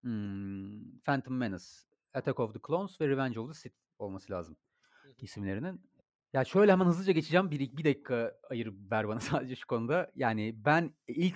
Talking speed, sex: 170 wpm, male